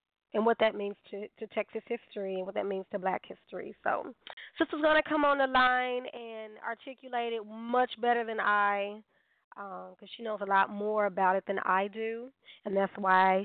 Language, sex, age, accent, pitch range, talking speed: English, female, 20-39, American, 205-250 Hz, 200 wpm